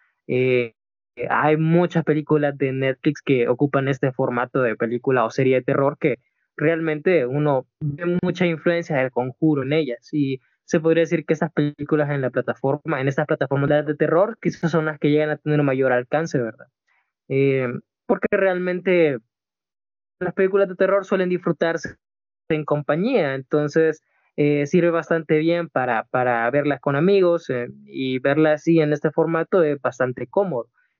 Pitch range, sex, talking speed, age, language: 140-170 Hz, male, 160 wpm, 20-39, Spanish